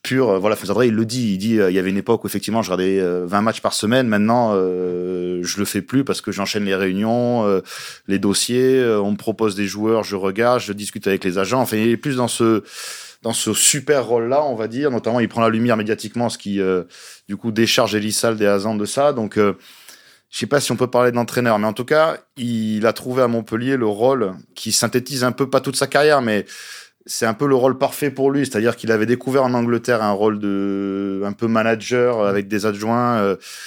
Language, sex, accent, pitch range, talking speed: French, male, French, 100-120 Hz, 235 wpm